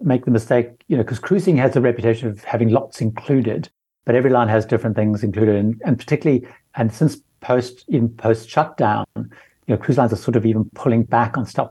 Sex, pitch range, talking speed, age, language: male, 110-130 Hz, 205 wpm, 60-79, English